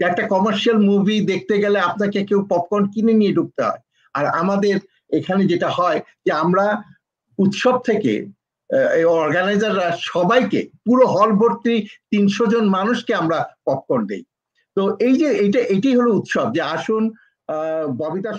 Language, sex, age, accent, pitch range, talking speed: Bengali, male, 50-69, native, 170-210 Hz, 65 wpm